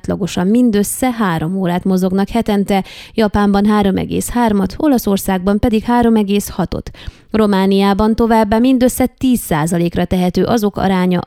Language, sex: Hungarian, female